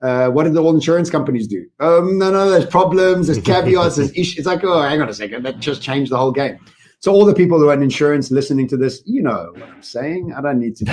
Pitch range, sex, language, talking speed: 135-175 Hz, male, English, 280 wpm